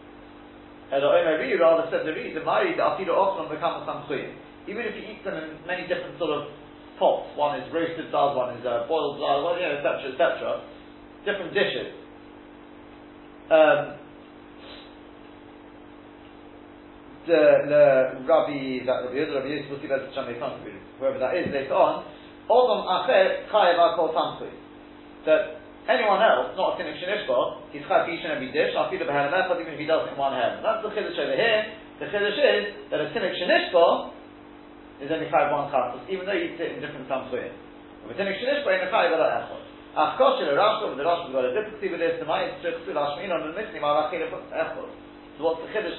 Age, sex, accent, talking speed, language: 40-59, male, British, 145 wpm, English